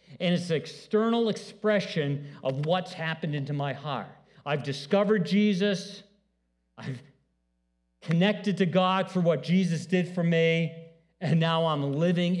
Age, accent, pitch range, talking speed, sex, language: 50-69, American, 150-210 Hz, 135 wpm, male, English